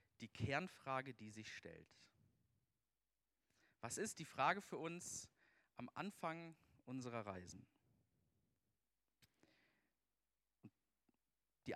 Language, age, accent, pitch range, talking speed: German, 40-59, German, 110-145 Hz, 80 wpm